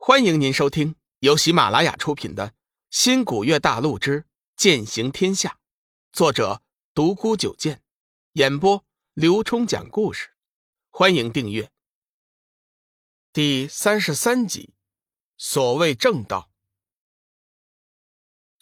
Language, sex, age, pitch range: Chinese, male, 50-69, 120-195 Hz